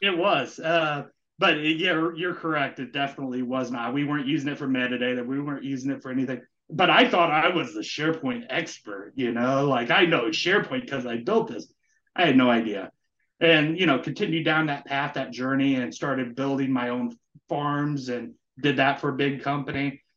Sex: male